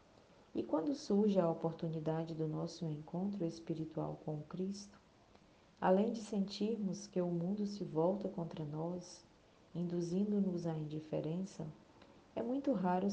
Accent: Brazilian